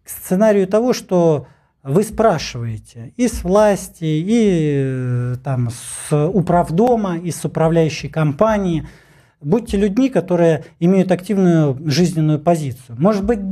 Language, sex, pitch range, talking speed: Russian, male, 130-180 Hz, 105 wpm